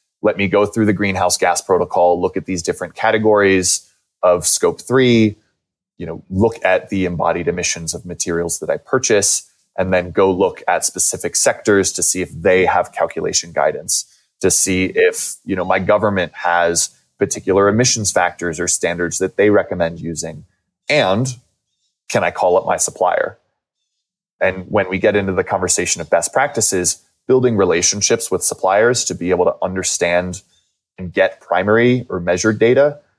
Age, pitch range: 20-39, 90-105 Hz